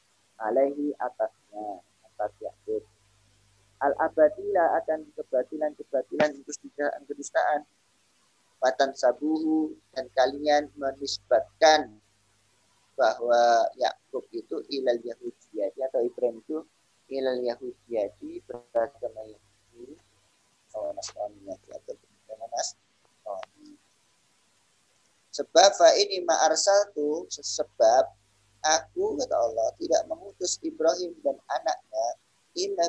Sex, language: male, Indonesian